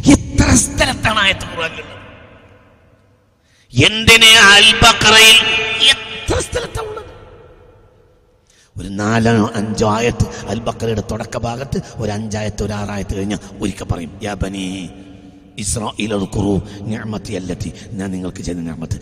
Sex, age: male, 50-69